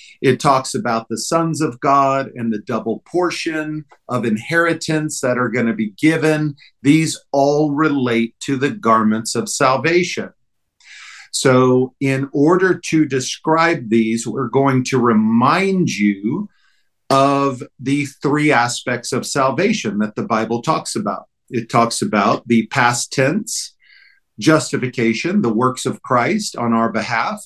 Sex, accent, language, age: male, American, English, 50-69